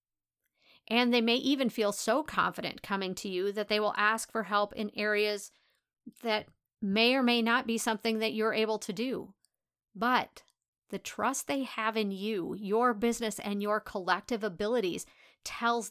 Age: 40-59